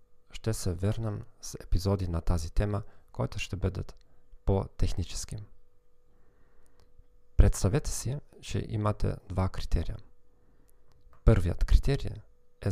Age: 40-59